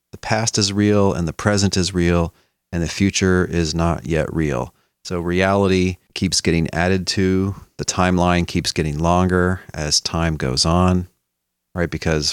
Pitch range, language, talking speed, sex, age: 80-95 Hz, English, 160 wpm, male, 40-59